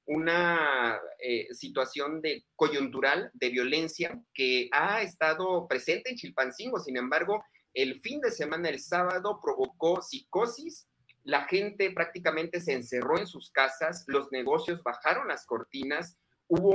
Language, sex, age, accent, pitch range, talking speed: Spanish, male, 30-49, Mexican, 135-195 Hz, 135 wpm